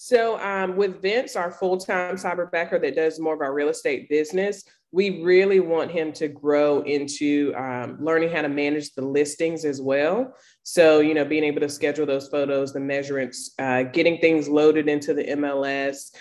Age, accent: 20-39, American